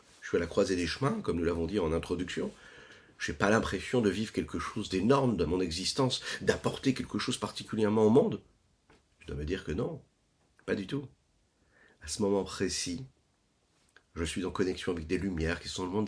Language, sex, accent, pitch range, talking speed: French, male, French, 95-125 Hz, 205 wpm